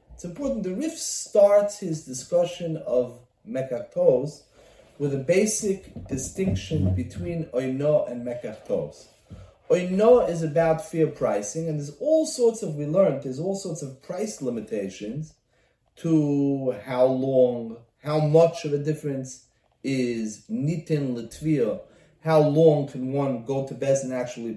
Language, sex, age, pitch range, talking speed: English, male, 30-49, 130-195 Hz, 135 wpm